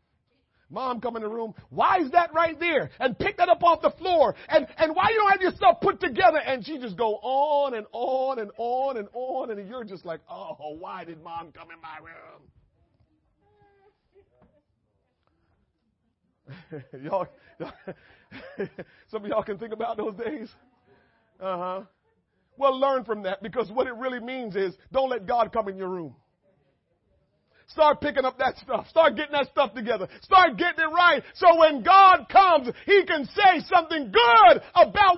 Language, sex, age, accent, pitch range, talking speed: English, male, 40-59, American, 200-335 Hz, 170 wpm